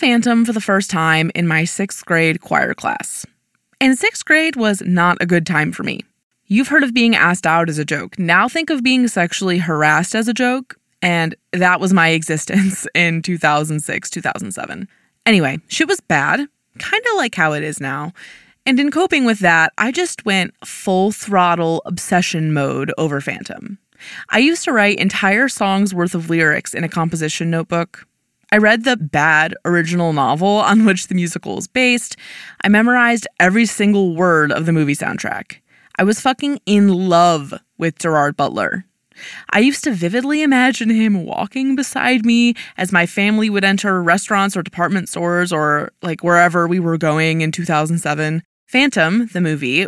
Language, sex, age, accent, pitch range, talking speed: English, female, 20-39, American, 170-235 Hz, 170 wpm